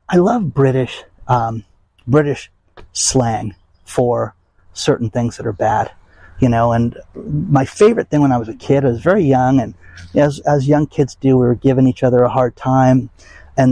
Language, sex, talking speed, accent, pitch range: English, male, 185 wpm, American, 115-150 Hz